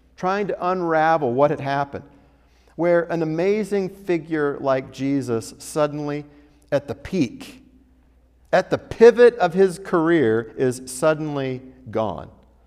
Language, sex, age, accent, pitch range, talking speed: English, male, 50-69, American, 120-195 Hz, 120 wpm